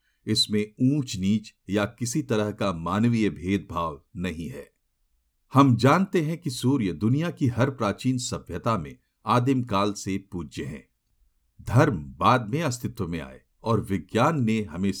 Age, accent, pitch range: 50-69, native, 100-135 Hz